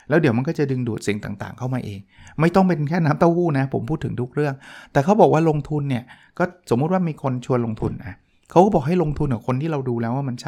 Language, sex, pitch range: Thai, male, 125-160 Hz